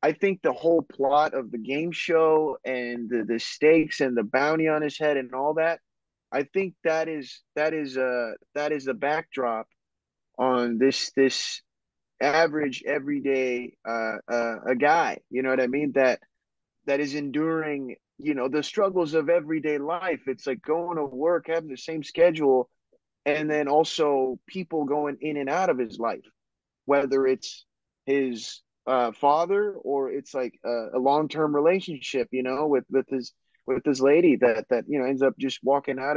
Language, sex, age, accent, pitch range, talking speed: English, male, 20-39, American, 125-155 Hz, 180 wpm